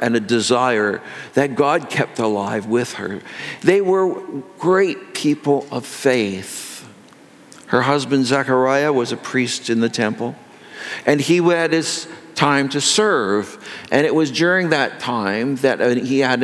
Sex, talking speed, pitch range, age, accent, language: male, 145 wpm, 110-140 Hz, 60-79, American, English